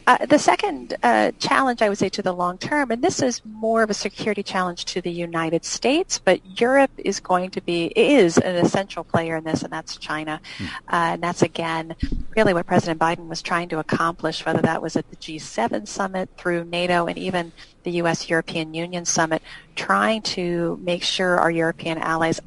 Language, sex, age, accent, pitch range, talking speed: English, female, 30-49, American, 165-195 Hz, 200 wpm